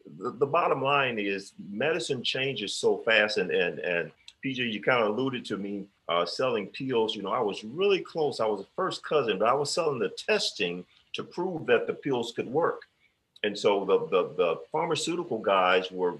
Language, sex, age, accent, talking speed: English, male, 40-59, American, 195 wpm